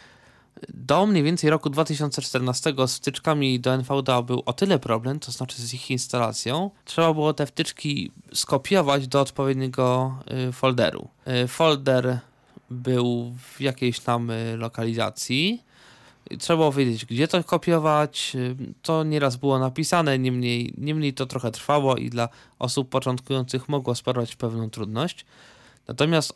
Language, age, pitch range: Polish, 20-39, 120-150 Hz